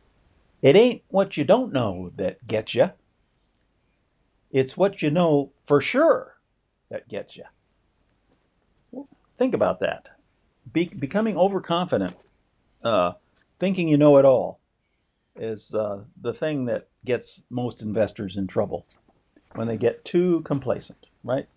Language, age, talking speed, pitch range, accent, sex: English, 50-69, 125 wpm, 115-185 Hz, American, male